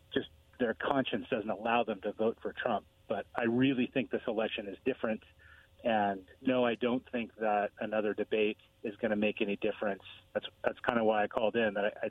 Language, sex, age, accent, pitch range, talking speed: English, male, 30-49, American, 105-125 Hz, 200 wpm